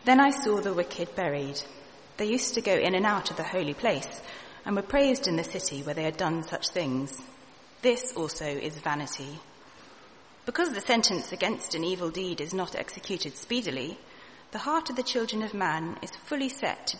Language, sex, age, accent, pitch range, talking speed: English, female, 30-49, British, 155-230 Hz, 195 wpm